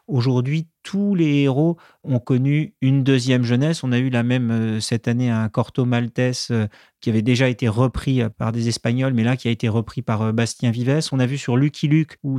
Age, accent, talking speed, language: 30-49, French, 205 wpm, French